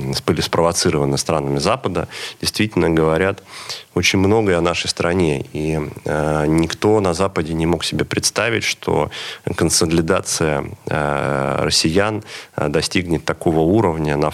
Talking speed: 115 wpm